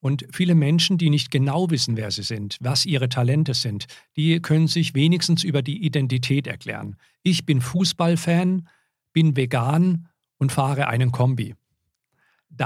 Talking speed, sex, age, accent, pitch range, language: 150 wpm, male, 50-69, German, 130-165 Hz, German